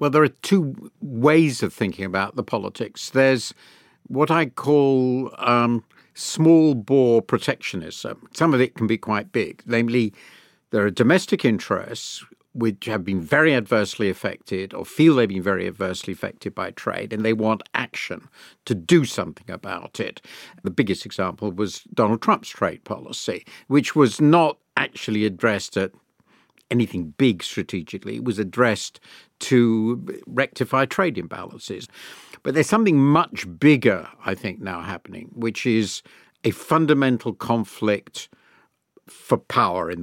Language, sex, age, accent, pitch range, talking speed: English, male, 50-69, British, 105-145 Hz, 140 wpm